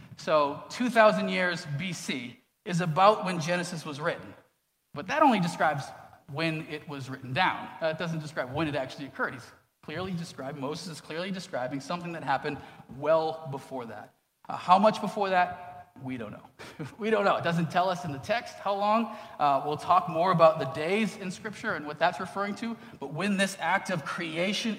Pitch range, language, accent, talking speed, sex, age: 150-185 Hz, English, American, 195 wpm, male, 30-49